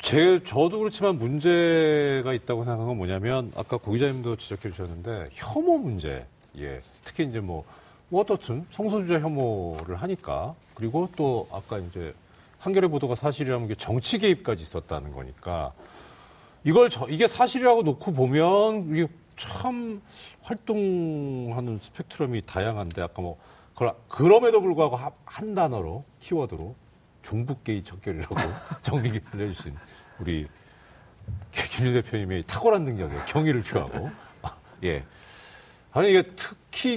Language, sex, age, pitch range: Korean, male, 40-59, 110-175 Hz